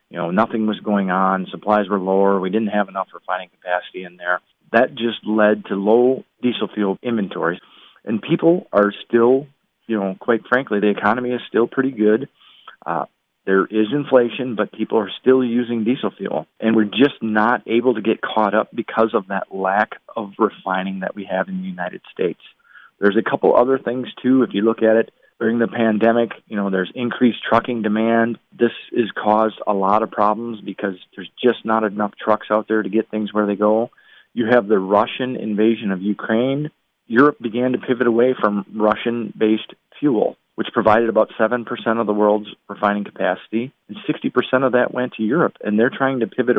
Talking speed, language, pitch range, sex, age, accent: 190 wpm, English, 105-120 Hz, male, 40-59, American